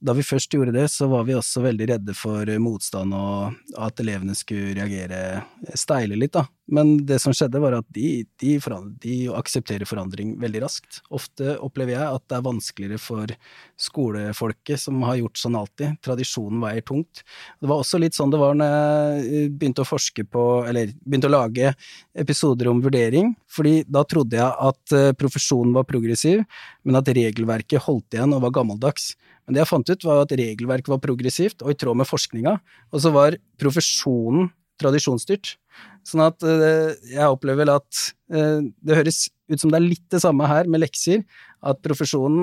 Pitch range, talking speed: 120-150 Hz, 180 wpm